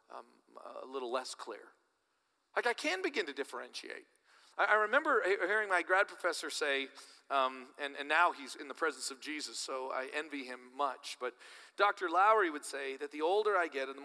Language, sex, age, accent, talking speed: English, male, 40-59, American, 195 wpm